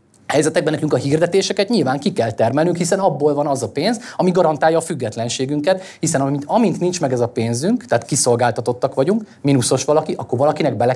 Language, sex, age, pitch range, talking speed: Hungarian, male, 30-49, 120-175 Hz, 185 wpm